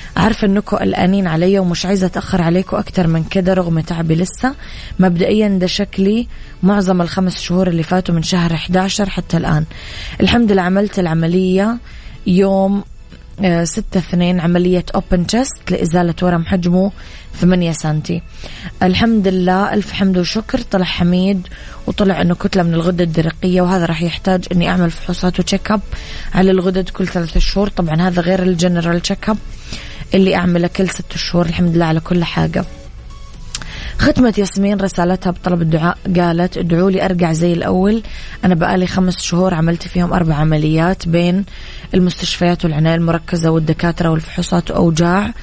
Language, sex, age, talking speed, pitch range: Arabic, female, 20-39, 145 wpm, 170-190 Hz